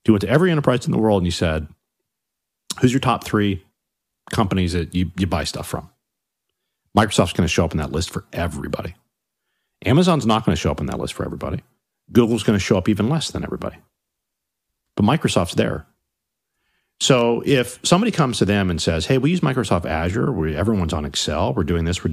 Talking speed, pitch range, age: 205 wpm, 90-120 Hz, 40-59